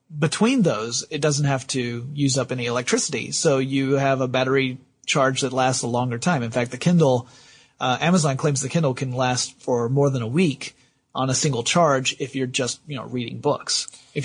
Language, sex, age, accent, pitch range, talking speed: English, male, 30-49, American, 130-155 Hz, 205 wpm